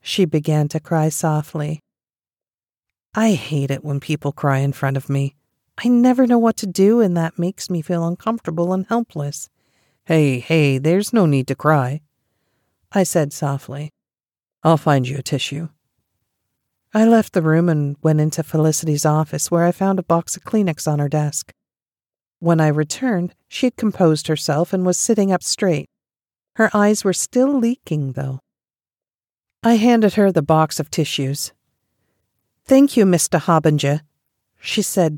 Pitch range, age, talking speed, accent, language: 150-195 Hz, 50-69, 160 wpm, American, English